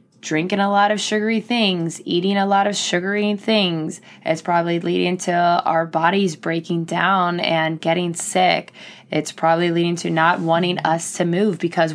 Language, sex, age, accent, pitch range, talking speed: English, female, 20-39, American, 170-215 Hz, 165 wpm